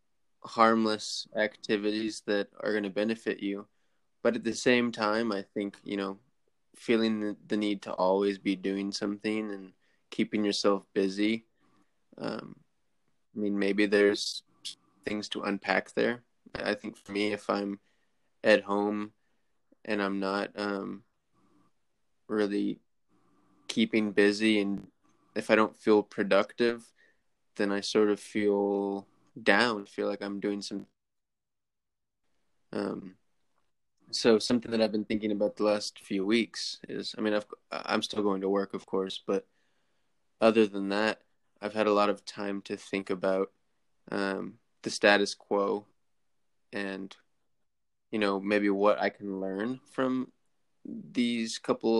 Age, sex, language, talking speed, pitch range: 20-39, male, English, 140 wpm, 100-110 Hz